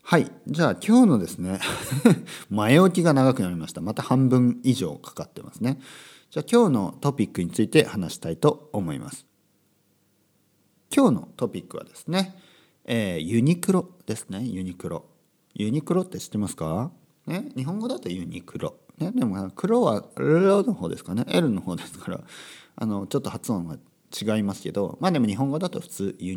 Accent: native